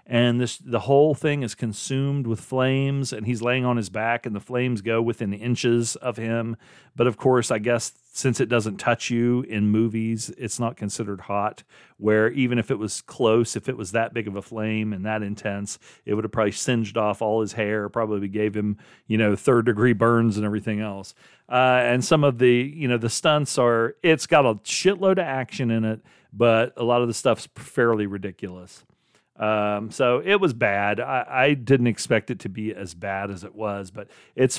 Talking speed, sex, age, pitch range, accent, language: 210 wpm, male, 40-59, 105-125 Hz, American, English